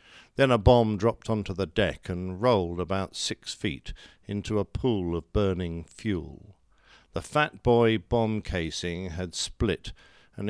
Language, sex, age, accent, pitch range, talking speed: English, male, 50-69, British, 90-120 Hz, 150 wpm